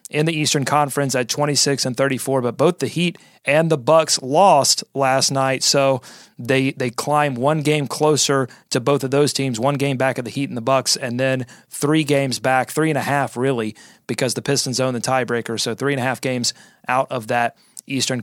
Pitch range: 130-165 Hz